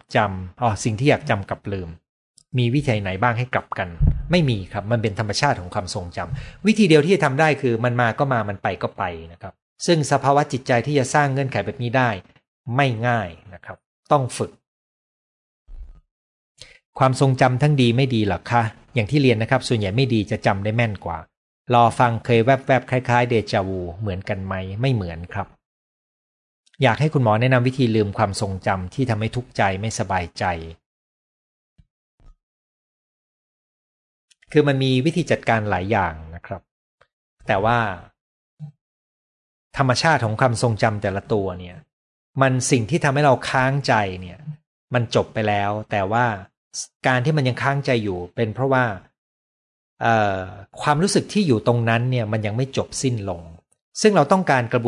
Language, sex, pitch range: Thai, male, 100-130 Hz